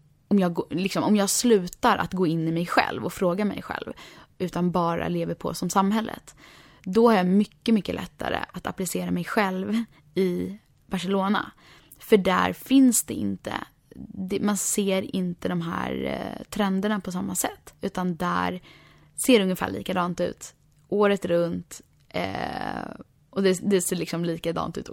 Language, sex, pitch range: Swedish, female, 170-205 Hz